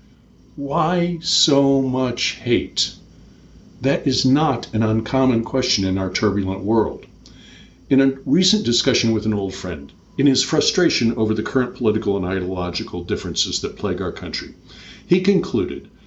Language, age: English, 50-69